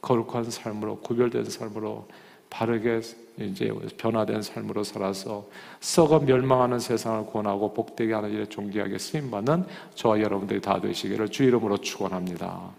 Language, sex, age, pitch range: Korean, male, 40-59, 110-140 Hz